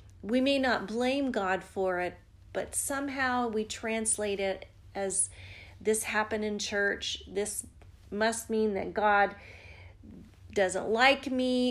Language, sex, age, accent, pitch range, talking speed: English, female, 40-59, American, 190-245 Hz, 130 wpm